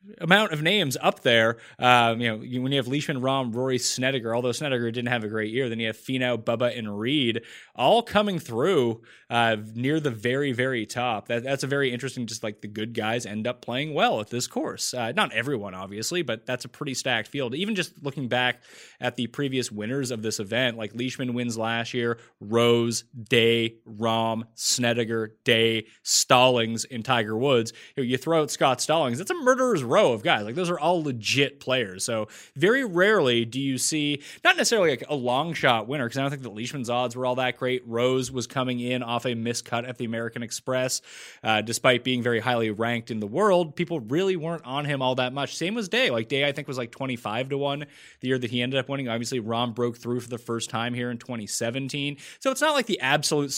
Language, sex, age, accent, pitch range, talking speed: English, male, 20-39, American, 115-140 Hz, 220 wpm